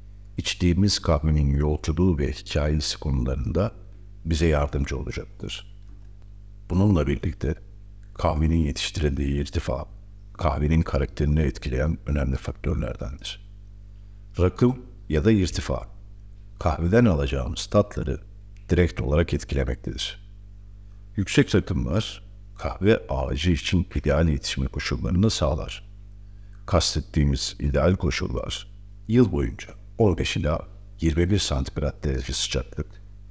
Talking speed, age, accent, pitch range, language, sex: 90 wpm, 60-79, native, 75-100 Hz, Turkish, male